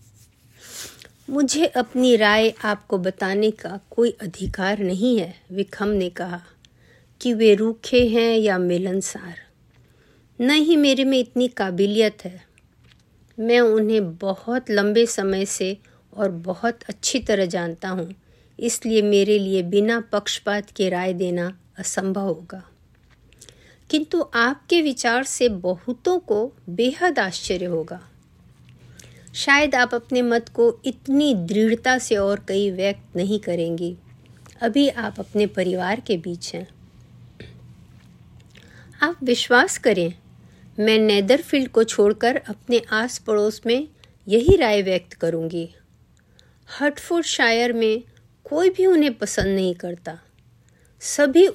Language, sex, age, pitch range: Hindi, female, 50-69, 185-245 Hz